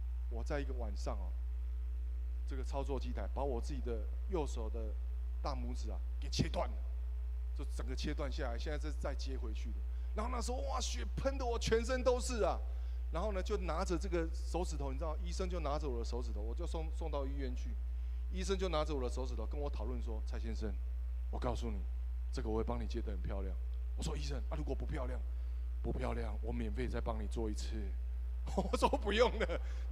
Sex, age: male, 20-39